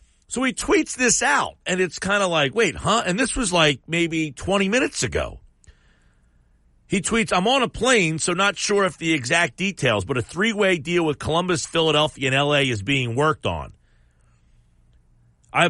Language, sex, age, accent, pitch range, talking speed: English, male, 40-59, American, 120-185 Hz, 180 wpm